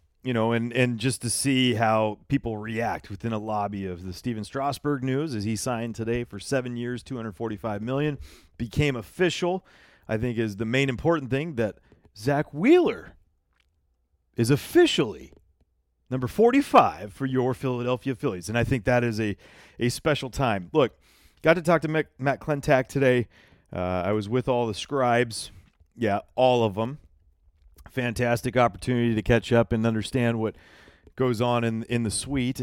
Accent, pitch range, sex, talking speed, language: American, 110-135 Hz, male, 165 wpm, English